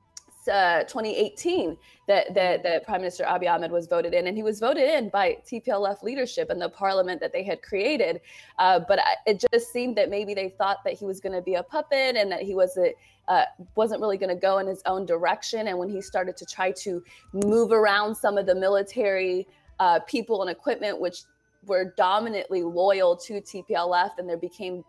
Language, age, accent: English, 20-39, American